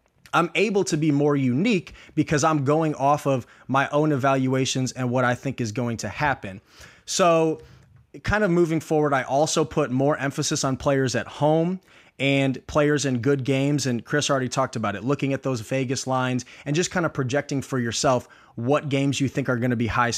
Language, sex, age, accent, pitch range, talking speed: English, male, 30-49, American, 130-155 Hz, 200 wpm